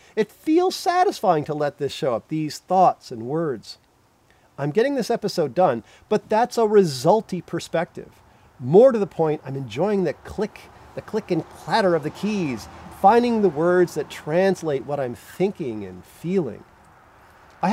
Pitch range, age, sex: 150-195 Hz, 40-59, male